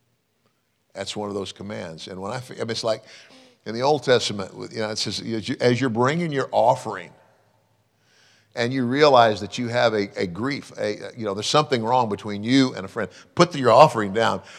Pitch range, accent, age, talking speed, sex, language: 100-125 Hz, American, 50-69, 200 wpm, male, English